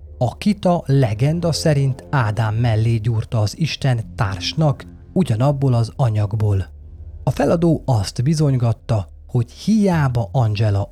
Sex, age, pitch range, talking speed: male, 30-49, 100-145 Hz, 110 wpm